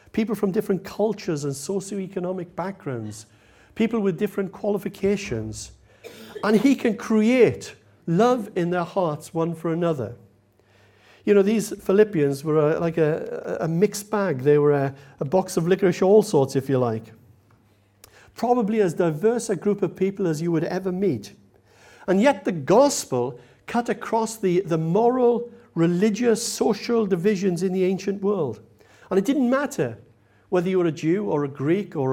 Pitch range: 130-205 Hz